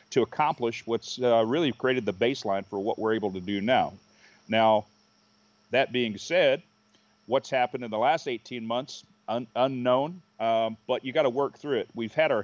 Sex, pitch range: male, 115-135 Hz